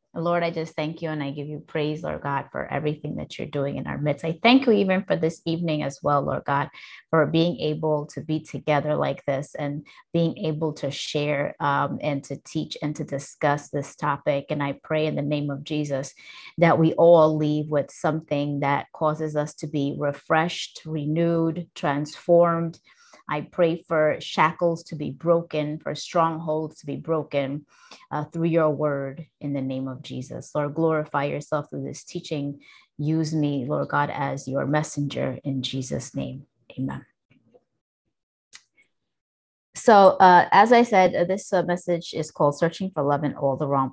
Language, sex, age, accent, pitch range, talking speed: English, female, 30-49, American, 145-165 Hz, 180 wpm